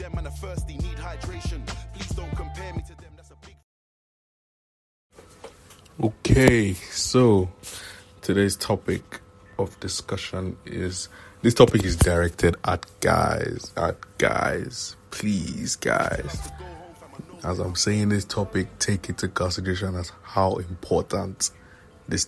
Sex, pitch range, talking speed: male, 90-100 Hz, 120 wpm